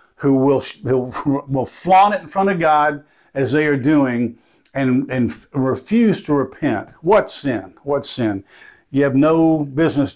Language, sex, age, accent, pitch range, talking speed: English, male, 50-69, American, 140-170 Hz, 160 wpm